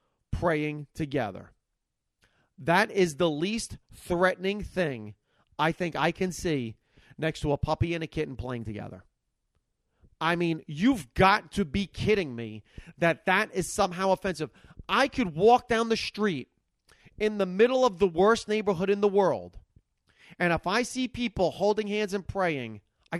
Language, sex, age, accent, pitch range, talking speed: English, male, 30-49, American, 155-230 Hz, 160 wpm